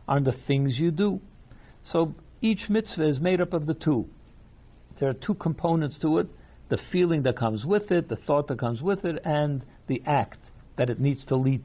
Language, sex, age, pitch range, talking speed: English, male, 60-79, 125-160 Hz, 205 wpm